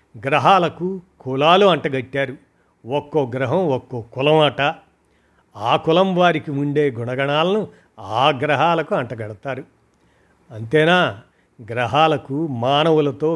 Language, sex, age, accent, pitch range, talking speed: Telugu, male, 50-69, native, 130-165 Hz, 80 wpm